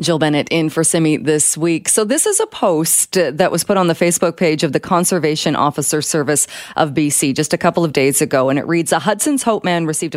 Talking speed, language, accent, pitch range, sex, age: 235 wpm, English, American, 145-175 Hz, female, 40-59